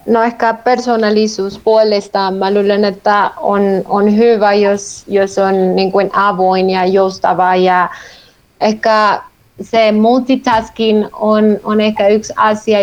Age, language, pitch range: 30-49, Finnish, 190-215 Hz